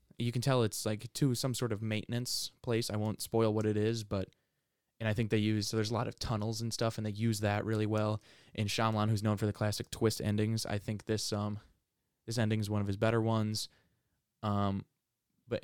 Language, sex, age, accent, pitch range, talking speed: English, male, 20-39, American, 105-115 Hz, 230 wpm